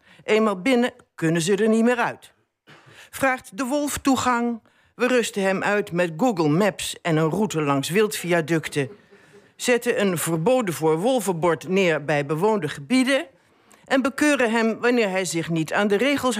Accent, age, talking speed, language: Dutch, 60-79, 155 wpm, Dutch